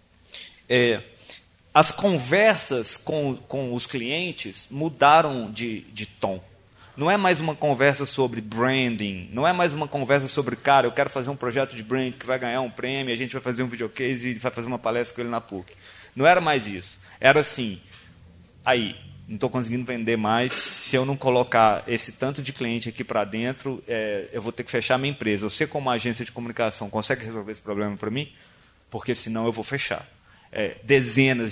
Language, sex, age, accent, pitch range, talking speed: Portuguese, male, 30-49, Brazilian, 110-145 Hz, 195 wpm